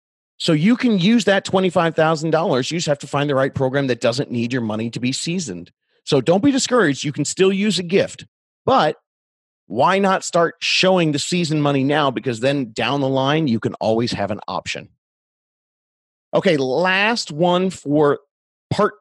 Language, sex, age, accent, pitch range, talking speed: English, male, 30-49, American, 120-165 Hz, 180 wpm